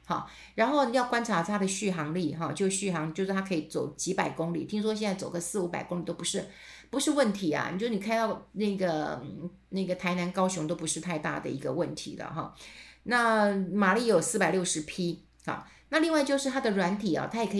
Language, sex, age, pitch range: Chinese, female, 50-69, 170-215 Hz